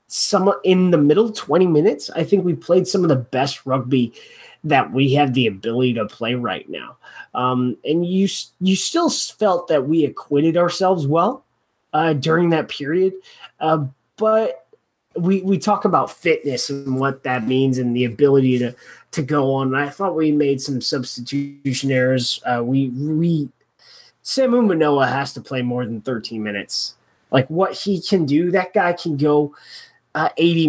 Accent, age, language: American, 20-39, English